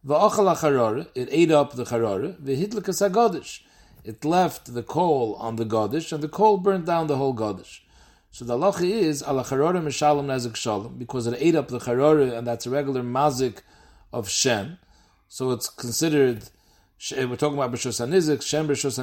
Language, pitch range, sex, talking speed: English, 125-170 Hz, male, 150 wpm